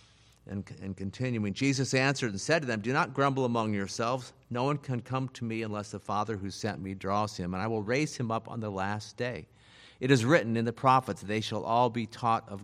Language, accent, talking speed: English, American, 240 wpm